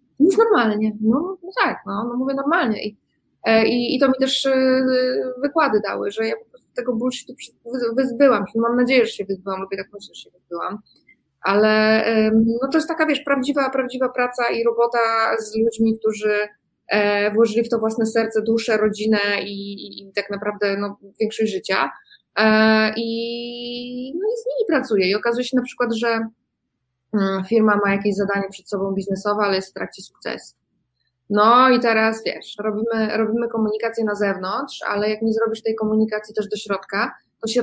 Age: 20-39